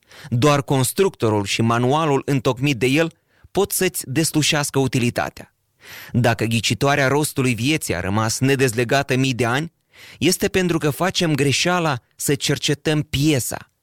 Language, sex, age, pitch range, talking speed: Romanian, male, 30-49, 120-155 Hz, 125 wpm